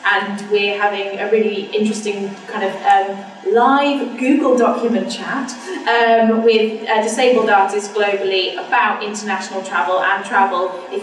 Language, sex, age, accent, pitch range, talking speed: English, female, 20-39, British, 195-230 Hz, 135 wpm